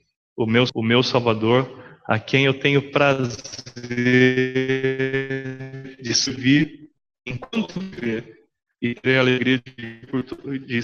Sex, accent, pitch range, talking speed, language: male, Brazilian, 120-155 Hz, 105 wpm, English